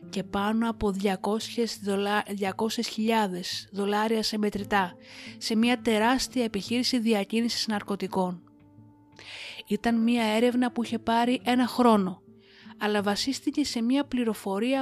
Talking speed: 110 wpm